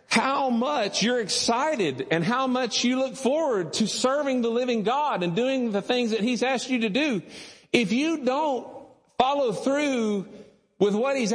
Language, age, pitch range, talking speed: English, 50-69, 195-235 Hz, 175 wpm